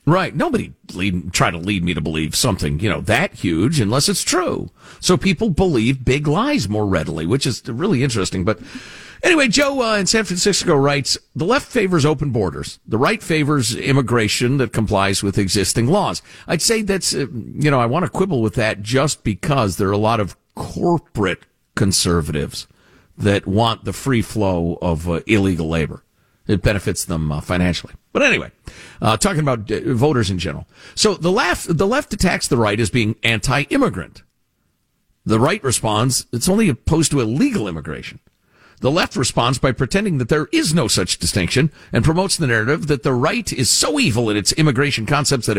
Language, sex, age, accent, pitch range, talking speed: English, male, 50-69, American, 105-165 Hz, 180 wpm